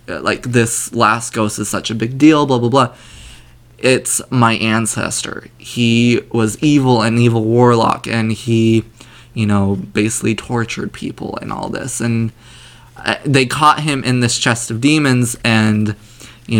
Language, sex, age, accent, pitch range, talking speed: English, male, 20-39, American, 115-130 Hz, 150 wpm